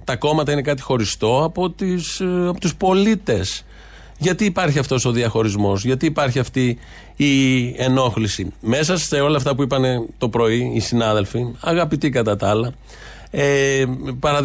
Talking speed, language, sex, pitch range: 140 wpm, Greek, male, 120-150 Hz